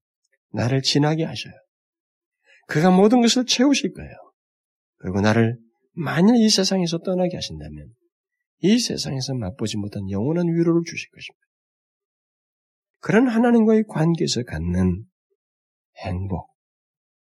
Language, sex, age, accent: Korean, male, 40-59, native